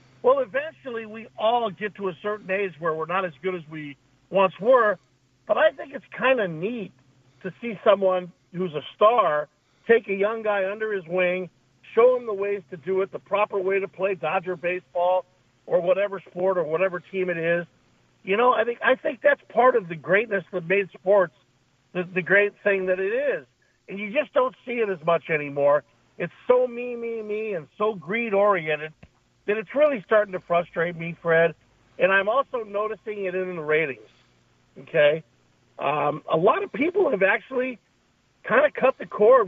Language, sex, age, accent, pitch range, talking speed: English, male, 50-69, American, 170-225 Hz, 195 wpm